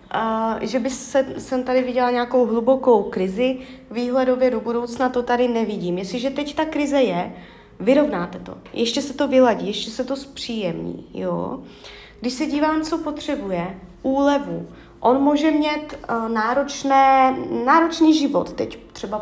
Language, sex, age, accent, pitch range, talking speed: Czech, female, 30-49, native, 205-260 Hz, 145 wpm